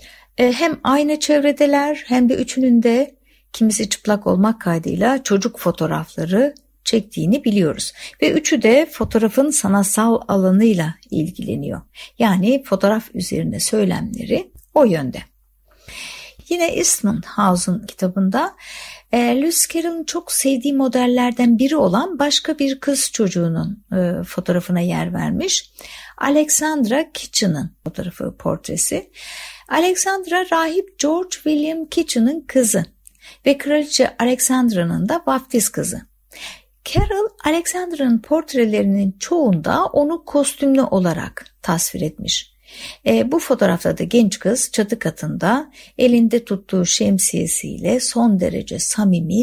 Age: 60-79